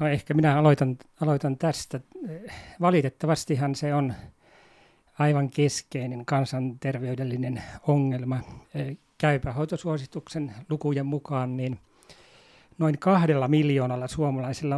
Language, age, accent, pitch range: Finnish, 40-59, native, 130-155 Hz